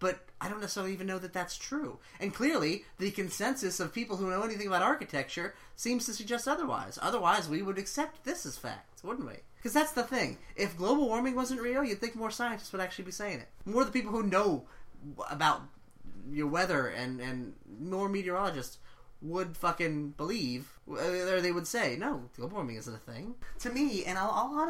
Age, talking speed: 30-49, 200 wpm